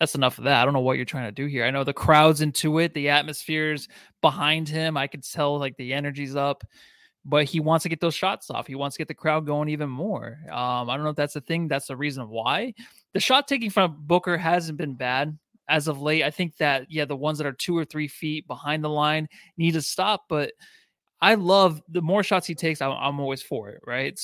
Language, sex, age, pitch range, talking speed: English, male, 20-39, 140-175 Hz, 255 wpm